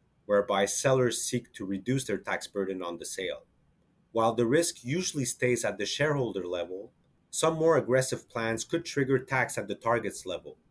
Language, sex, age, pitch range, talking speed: English, male, 30-49, 100-130 Hz, 175 wpm